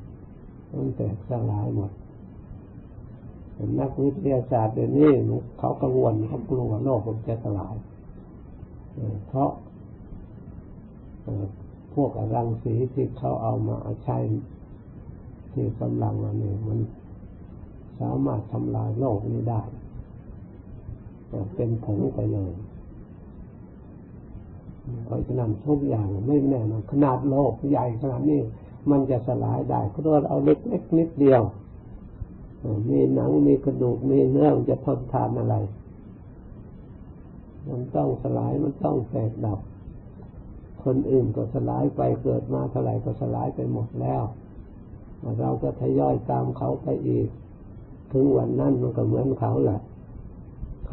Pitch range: 100-130 Hz